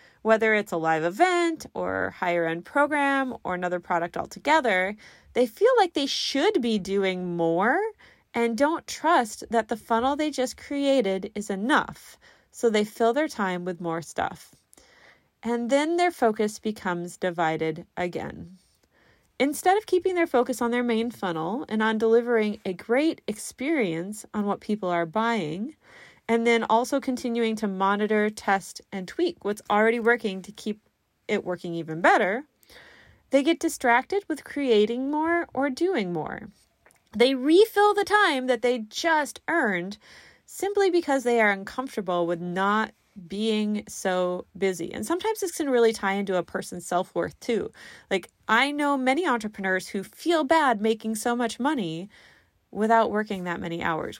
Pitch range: 190-275 Hz